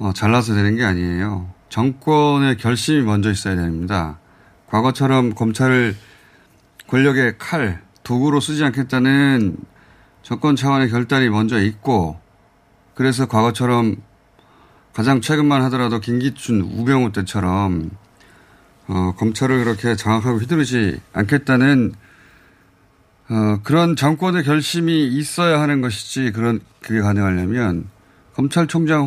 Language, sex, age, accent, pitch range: Korean, male, 30-49, native, 100-140 Hz